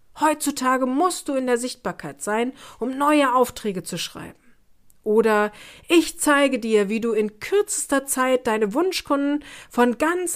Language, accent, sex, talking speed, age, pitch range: German, German, female, 145 wpm, 40-59, 215-280 Hz